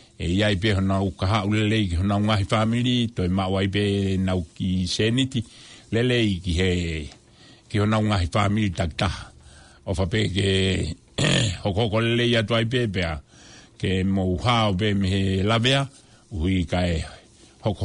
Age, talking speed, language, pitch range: 60-79, 75 wpm, English, 95-115 Hz